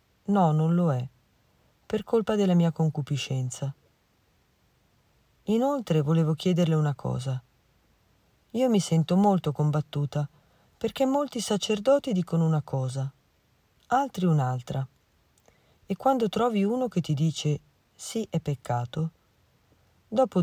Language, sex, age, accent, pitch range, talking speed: Italian, female, 40-59, native, 140-200 Hz, 110 wpm